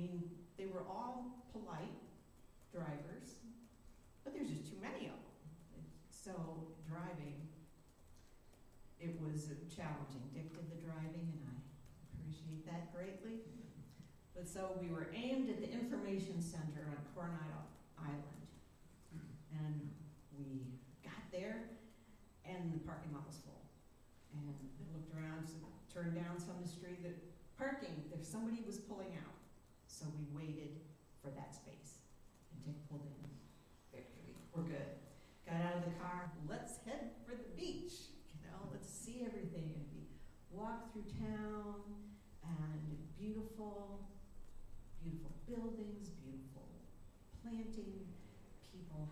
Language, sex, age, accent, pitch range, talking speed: English, female, 50-69, American, 150-195 Hz, 130 wpm